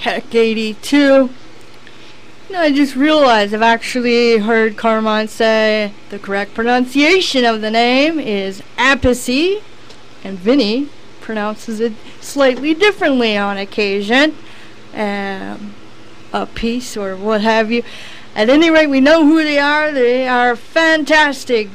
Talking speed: 125 wpm